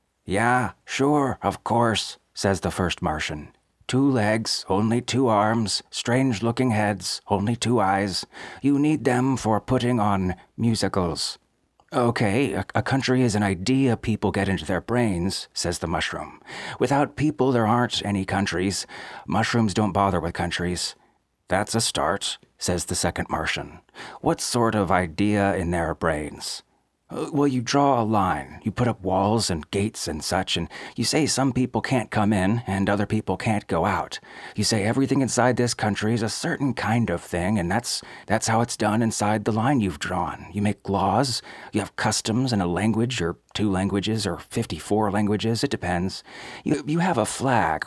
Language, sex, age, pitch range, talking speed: English, male, 30-49, 95-120 Hz, 170 wpm